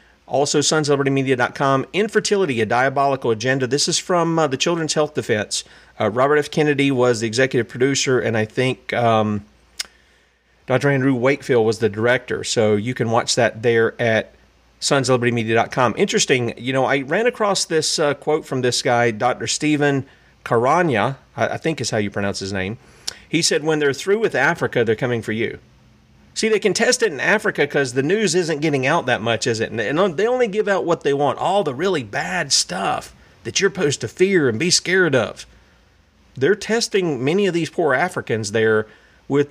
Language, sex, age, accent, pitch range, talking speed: English, male, 40-59, American, 120-165 Hz, 185 wpm